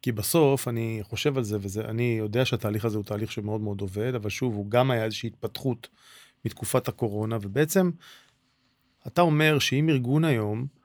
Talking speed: 170 wpm